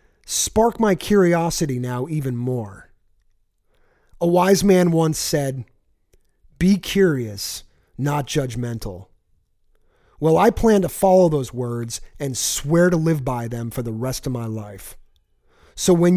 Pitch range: 125-175 Hz